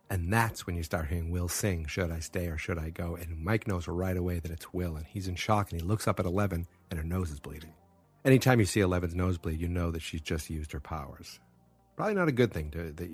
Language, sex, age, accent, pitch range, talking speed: English, male, 40-59, American, 85-100 Hz, 260 wpm